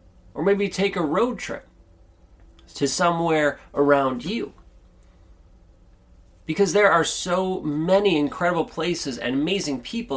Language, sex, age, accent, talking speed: English, male, 30-49, American, 120 wpm